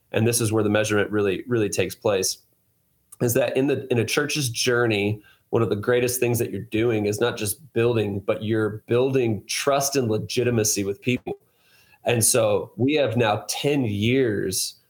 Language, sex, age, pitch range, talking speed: English, male, 30-49, 110-130 Hz, 180 wpm